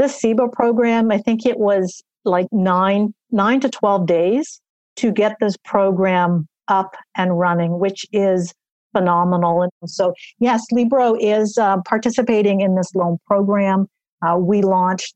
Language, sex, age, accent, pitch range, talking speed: English, female, 50-69, American, 185-225 Hz, 145 wpm